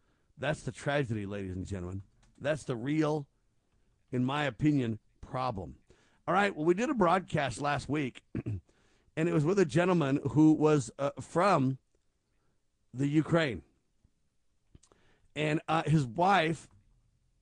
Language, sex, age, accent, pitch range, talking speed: English, male, 50-69, American, 125-160 Hz, 130 wpm